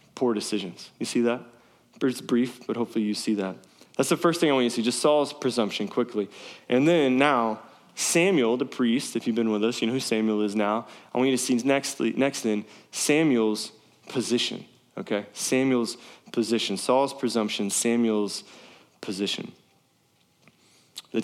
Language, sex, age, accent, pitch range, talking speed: English, male, 20-39, American, 110-130 Hz, 165 wpm